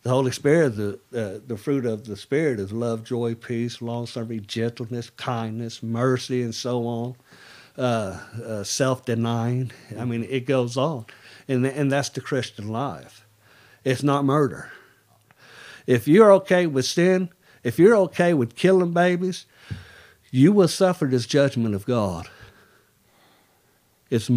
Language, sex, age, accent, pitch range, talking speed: English, male, 50-69, American, 115-145 Hz, 140 wpm